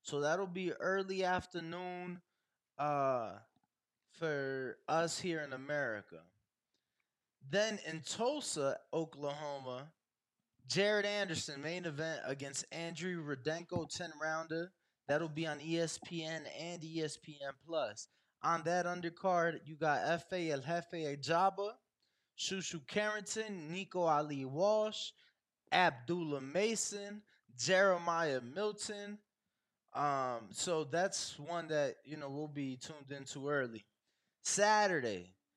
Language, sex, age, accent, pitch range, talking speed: English, male, 20-39, American, 145-185 Hz, 100 wpm